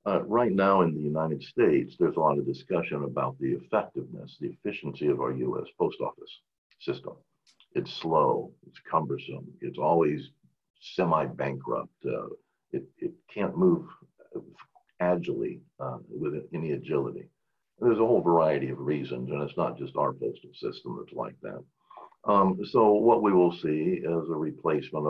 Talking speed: 160 wpm